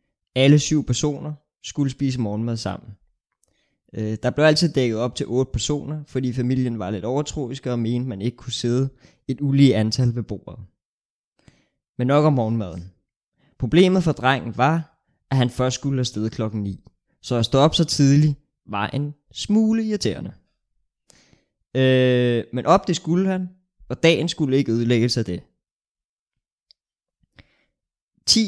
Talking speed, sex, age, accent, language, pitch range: 150 wpm, male, 20-39, native, Danish, 110-145 Hz